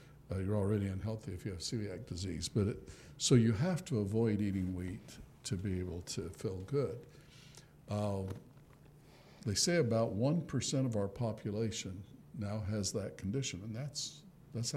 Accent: American